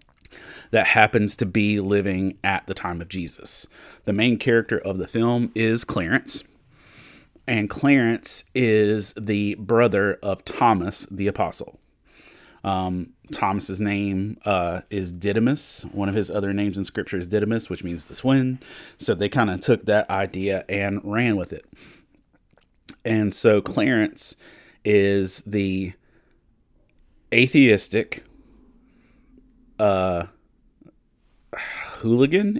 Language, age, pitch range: English, 30-49, 100-115 Hz